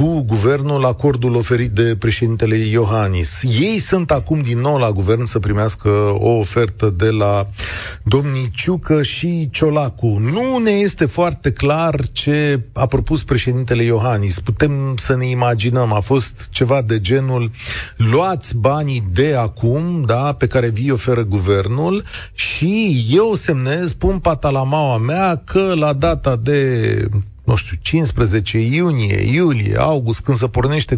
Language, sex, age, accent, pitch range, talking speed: Romanian, male, 40-59, native, 110-150 Hz, 140 wpm